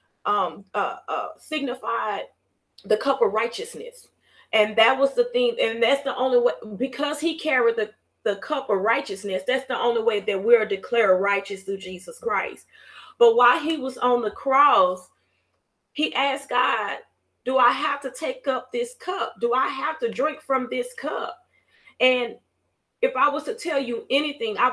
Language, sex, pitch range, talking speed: English, female, 230-320 Hz, 175 wpm